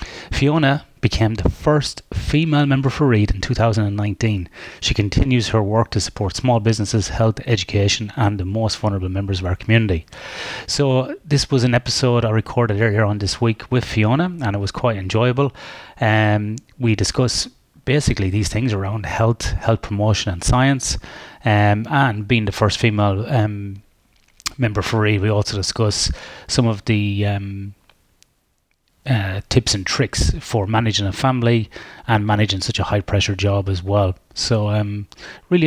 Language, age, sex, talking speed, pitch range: English, 30-49, male, 160 wpm, 100-120 Hz